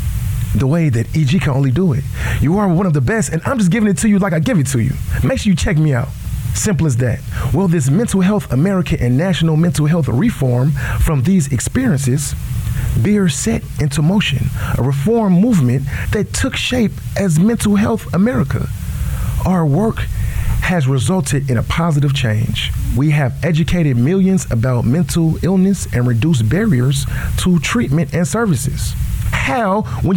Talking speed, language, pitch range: 175 wpm, English, 125-185 Hz